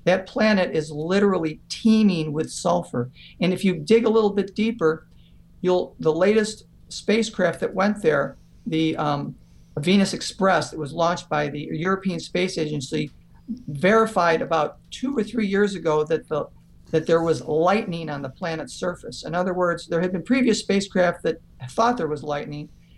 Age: 50-69